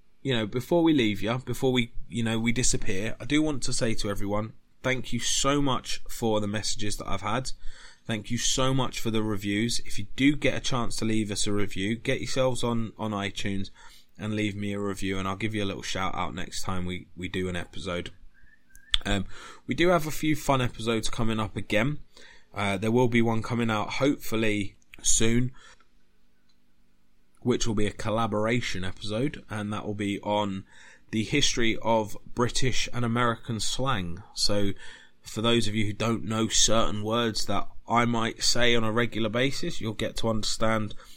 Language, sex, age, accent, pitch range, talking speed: English, male, 20-39, British, 100-120 Hz, 190 wpm